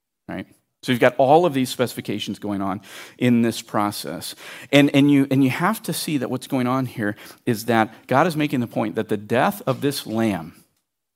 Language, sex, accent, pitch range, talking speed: English, male, American, 110-140 Hz, 210 wpm